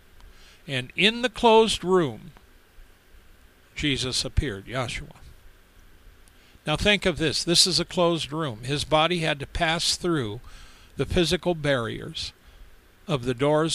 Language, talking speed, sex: English, 125 wpm, male